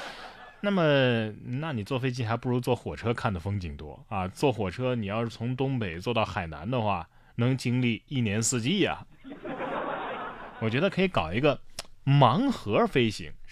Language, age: Chinese, 20-39